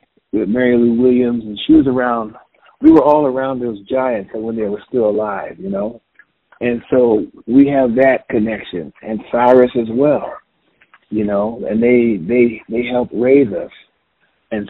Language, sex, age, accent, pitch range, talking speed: English, male, 50-69, American, 110-140 Hz, 165 wpm